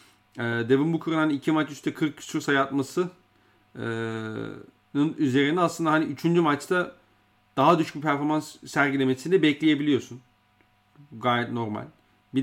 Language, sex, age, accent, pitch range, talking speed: Turkish, male, 40-59, native, 115-145 Hz, 135 wpm